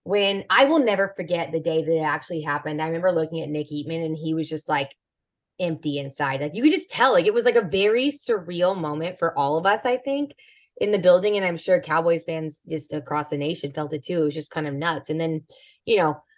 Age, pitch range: 20-39, 155-210 Hz